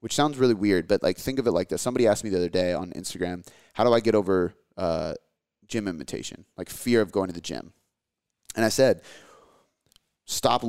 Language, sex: English, male